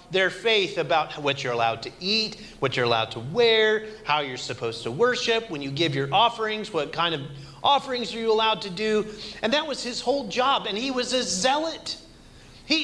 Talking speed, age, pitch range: 205 wpm, 30-49, 145-220 Hz